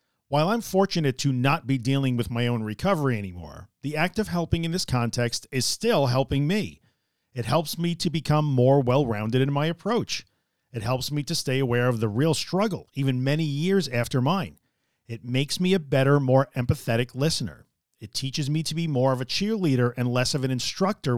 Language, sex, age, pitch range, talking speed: English, male, 40-59, 120-165 Hz, 200 wpm